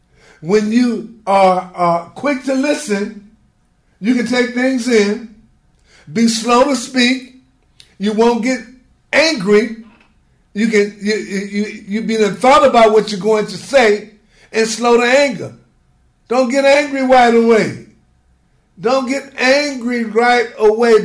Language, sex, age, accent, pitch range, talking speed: English, male, 60-79, American, 205-250 Hz, 135 wpm